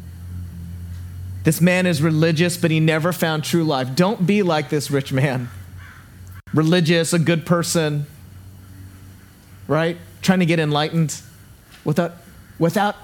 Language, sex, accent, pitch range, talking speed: English, male, American, 130-205 Hz, 125 wpm